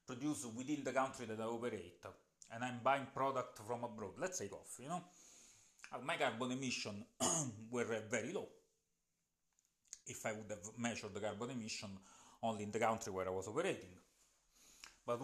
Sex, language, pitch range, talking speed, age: male, English, 105-130 Hz, 160 wpm, 30-49